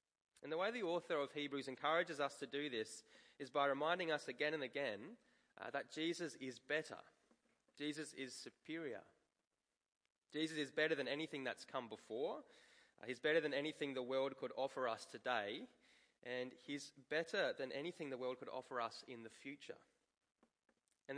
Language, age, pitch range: English, 20-39, 130-160 Hz